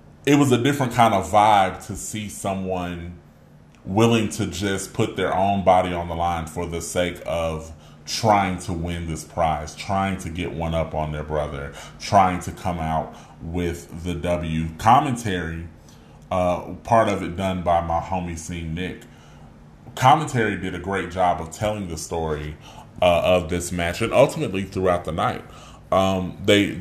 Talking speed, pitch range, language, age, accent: 170 wpm, 80-100 Hz, English, 30-49, American